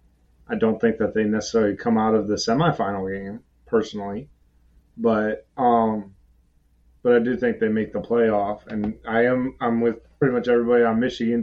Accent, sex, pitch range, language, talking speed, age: American, male, 95-120 Hz, English, 175 wpm, 20-39